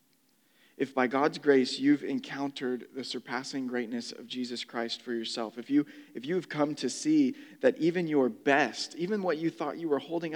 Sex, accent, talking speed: male, American, 185 wpm